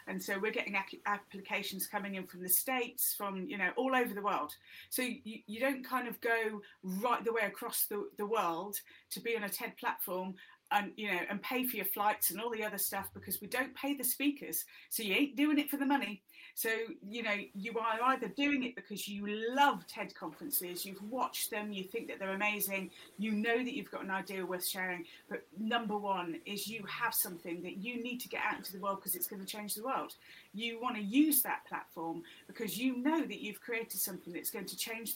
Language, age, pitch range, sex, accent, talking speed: English, 30-49, 190-245 Hz, female, British, 230 wpm